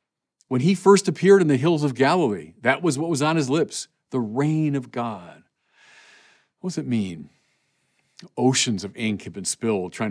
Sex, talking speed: male, 185 wpm